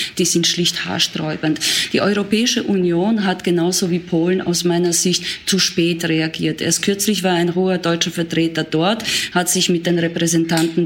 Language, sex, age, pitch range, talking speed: German, female, 20-39, 165-185 Hz, 165 wpm